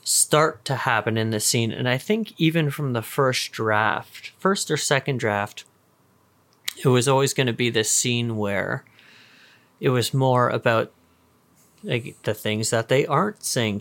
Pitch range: 110-130 Hz